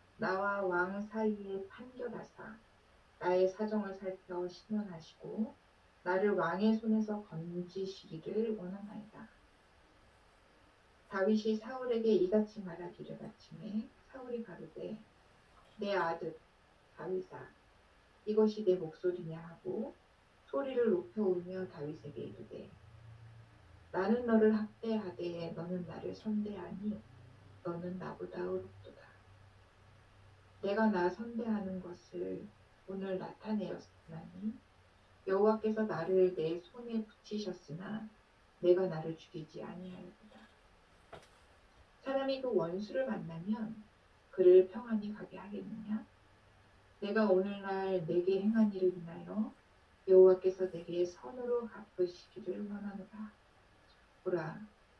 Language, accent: Korean, native